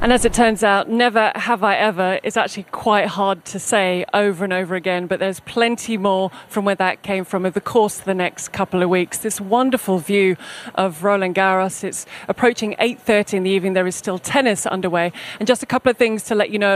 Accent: British